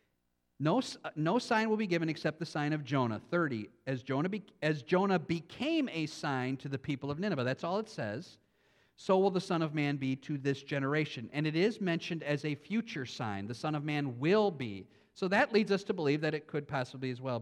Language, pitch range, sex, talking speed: English, 125-180 Hz, male, 225 wpm